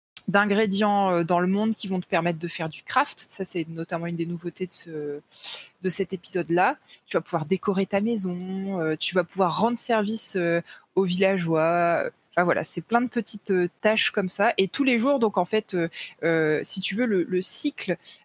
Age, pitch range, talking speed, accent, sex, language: 20-39, 175-215 Hz, 195 wpm, French, female, French